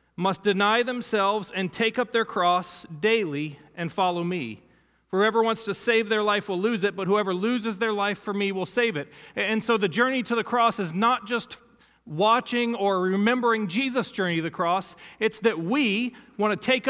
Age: 40-59